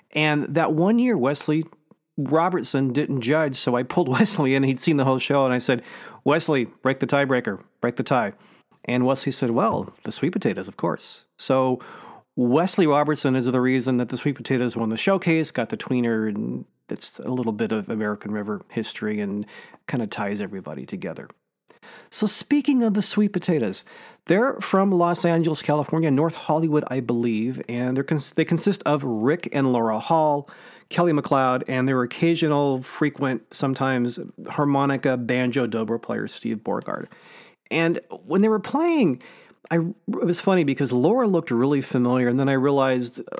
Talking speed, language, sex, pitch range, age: 175 wpm, English, male, 125-165 Hz, 40-59